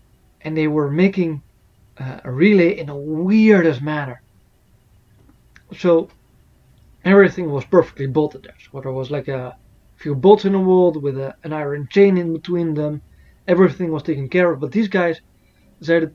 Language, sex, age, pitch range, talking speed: English, male, 20-39, 135-175 Hz, 160 wpm